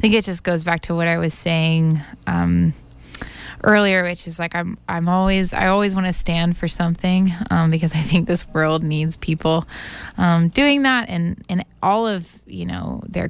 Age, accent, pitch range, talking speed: 20-39, American, 155-185 Hz, 205 wpm